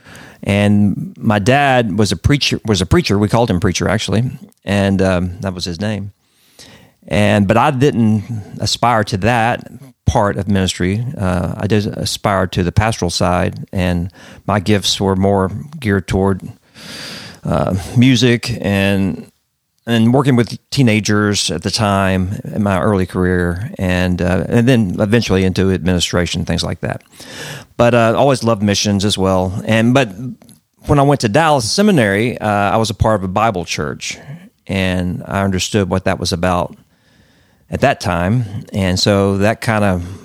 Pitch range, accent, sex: 95-115 Hz, American, male